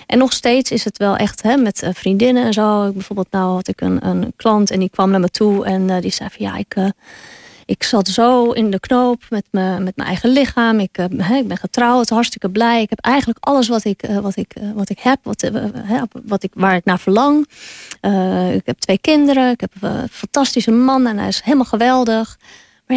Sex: female